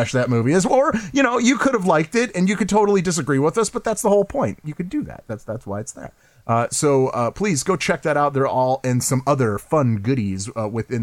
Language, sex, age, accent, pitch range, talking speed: English, male, 30-49, American, 115-150 Hz, 265 wpm